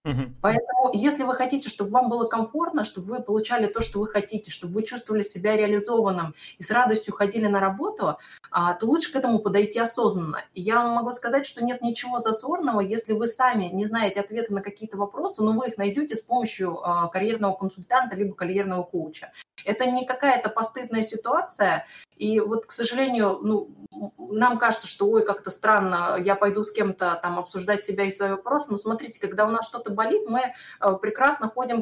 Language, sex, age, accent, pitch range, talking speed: Russian, female, 20-39, native, 195-230 Hz, 180 wpm